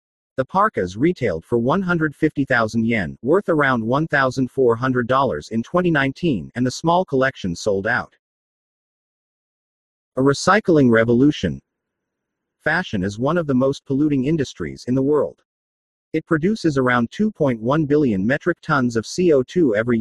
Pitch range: 115-155 Hz